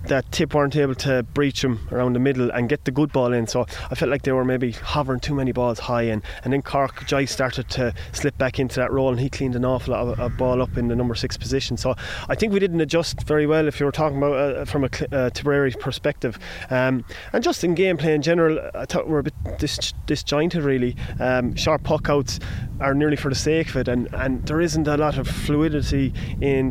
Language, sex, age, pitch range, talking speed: English, male, 20-39, 120-145 Hz, 245 wpm